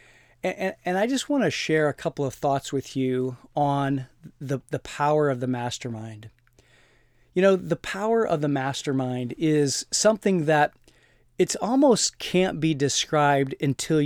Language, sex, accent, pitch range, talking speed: English, male, American, 130-170 Hz, 150 wpm